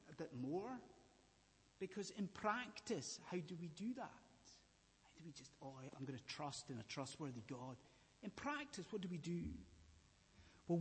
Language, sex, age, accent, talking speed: English, male, 30-49, British, 170 wpm